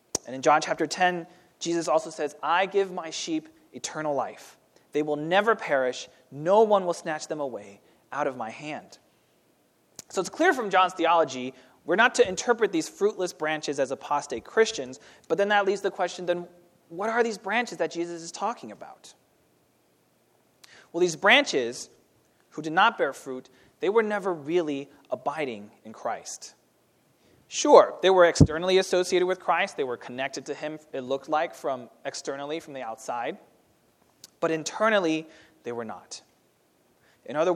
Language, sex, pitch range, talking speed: English, male, 150-205 Hz, 165 wpm